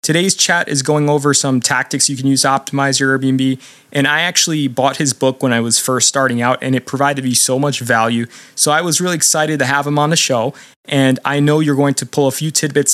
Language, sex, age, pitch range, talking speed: English, male, 20-39, 110-140 Hz, 250 wpm